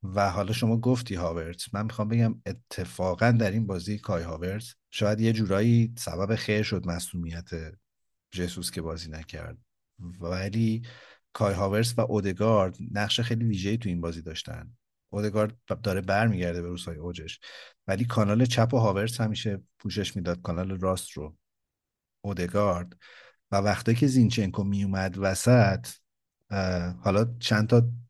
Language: Persian